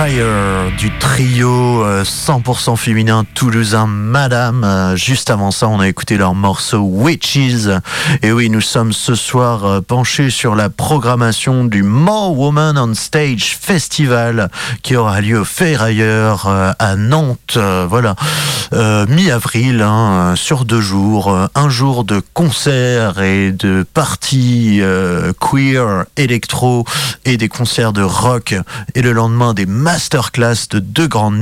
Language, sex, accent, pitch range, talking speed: French, male, French, 100-130 Hz, 130 wpm